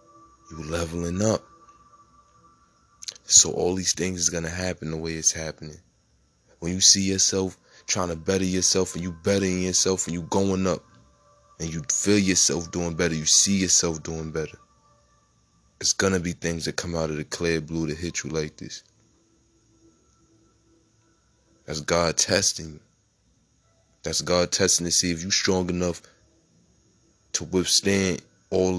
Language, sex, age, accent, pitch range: Japanese, male, 20-39, American, 80-100 Hz